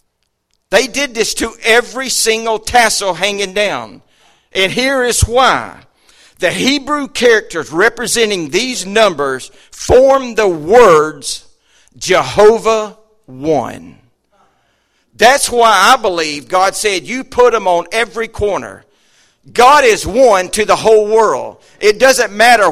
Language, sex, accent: English, male, American